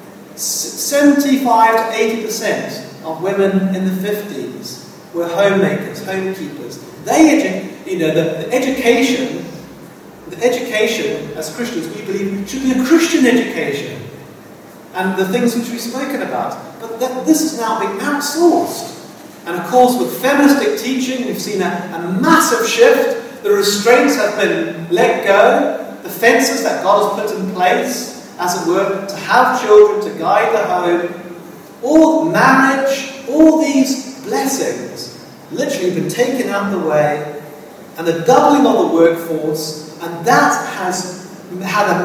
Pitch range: 170-250 Hz